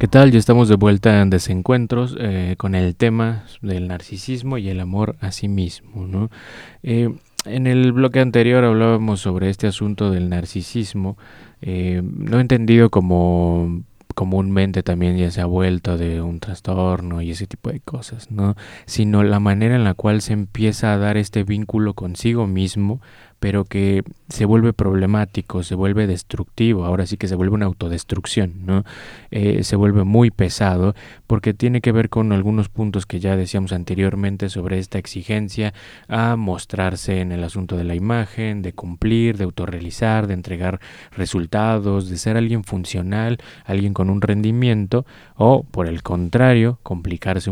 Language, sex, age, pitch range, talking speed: Spanish, male, 20-39, 95-115 Hz, 160 wpm